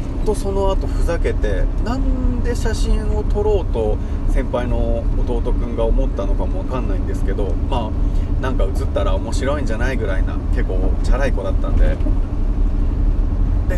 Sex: male